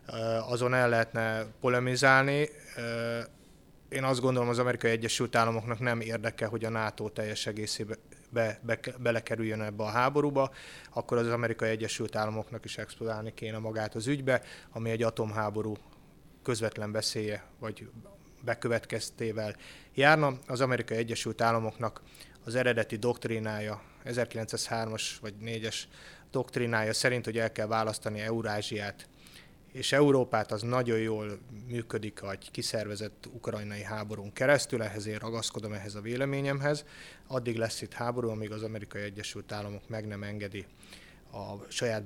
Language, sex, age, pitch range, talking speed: Hungarian, male, 20-39, 105-120 Hz, 125 wpm